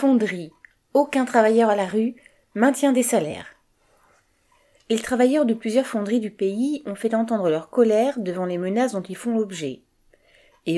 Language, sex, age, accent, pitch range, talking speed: French, female, 30-49, French, 160-225 Hz, 160 wpm